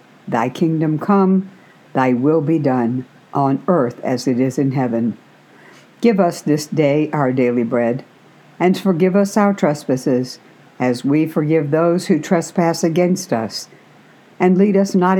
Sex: female